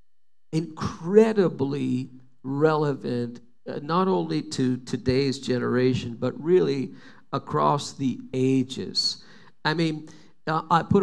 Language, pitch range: English, 135-190 Hz